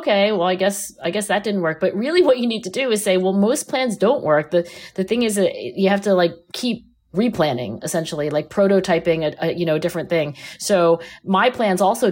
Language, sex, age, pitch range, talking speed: English, female, 30-49, 170-205 Hz, 235 wpm